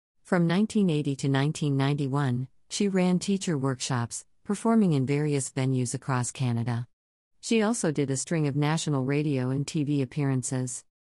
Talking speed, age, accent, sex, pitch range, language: 135 wpm, 50-69, American, female, 130-160 Hz, English